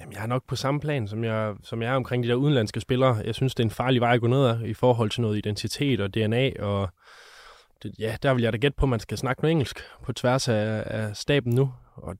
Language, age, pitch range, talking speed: Danish, 20-39, 100-125 Hz, 270 wpm